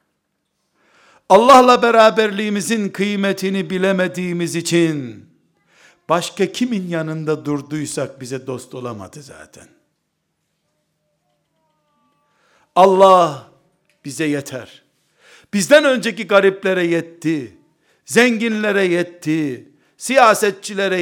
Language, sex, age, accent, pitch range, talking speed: Turkish, male, 60-79, native, 140-195 Hz, 65 wpm